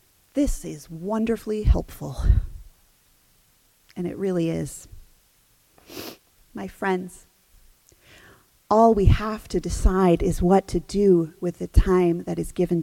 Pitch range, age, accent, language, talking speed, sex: 170-220 Hz, 30-49, American, English, 115 wpm, female